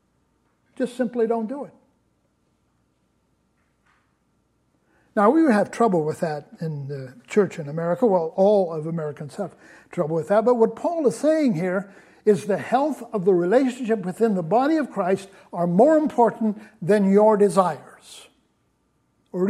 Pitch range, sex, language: 170-225 Hz, male, English